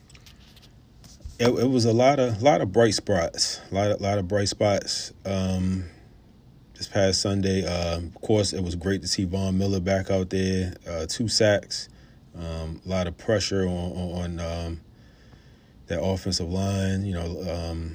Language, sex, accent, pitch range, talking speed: English, male, American, 90-115 Hz, 170 wpm